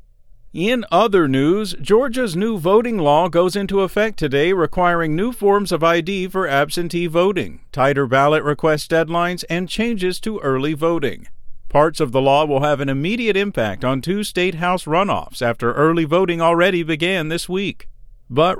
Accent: American